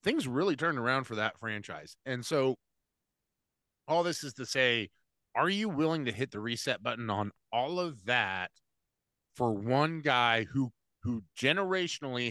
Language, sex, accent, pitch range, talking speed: English, male, American, 105-150 Hz, 155 wpm